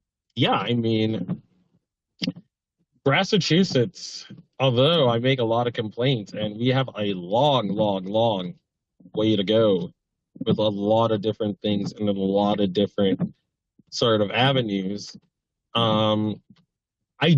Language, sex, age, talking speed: English, male, 30-49, 130 wpm